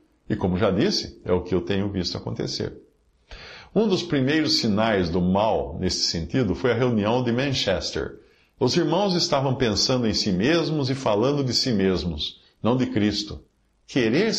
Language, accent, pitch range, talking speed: Portuguese, Brazilian, 95-135 Hz, 165 wpm